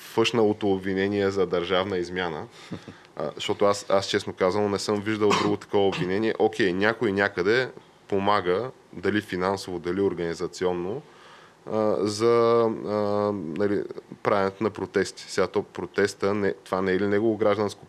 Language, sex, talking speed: Bulgarian, male, 120 wpm